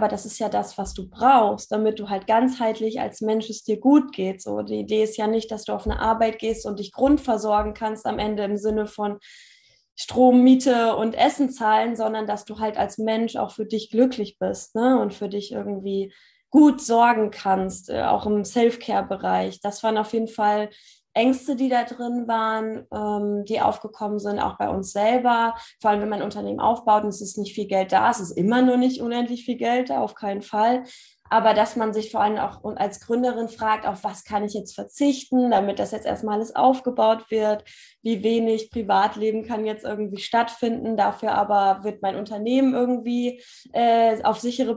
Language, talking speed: German, 200 wpm